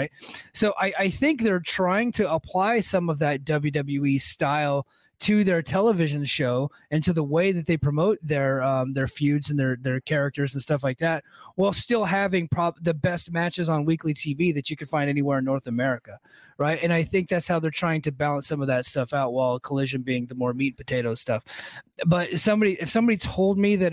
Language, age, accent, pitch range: English, 30-49, American, 145-185 Hz